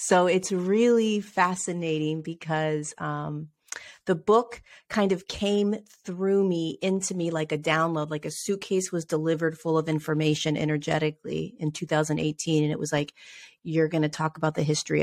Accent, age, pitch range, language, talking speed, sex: American, 30-49, 155-210 Hz, English, 160 wpm, female